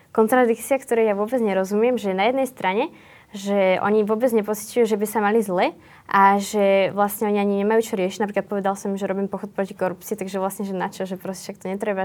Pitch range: 190-215 Hz